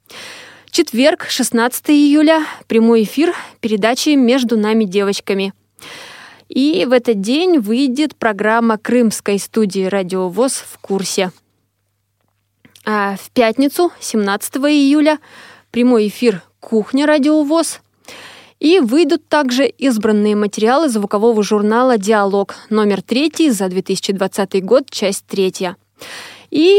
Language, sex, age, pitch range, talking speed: Russian, female, 20-39, 205-275 Hz, 100 wpm